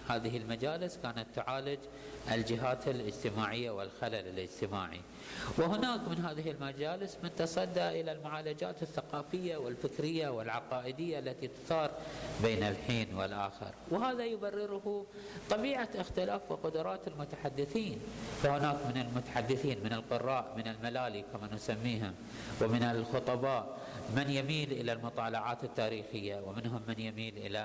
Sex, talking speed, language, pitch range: male, 110 wpm, Arabic, 115-165 Hz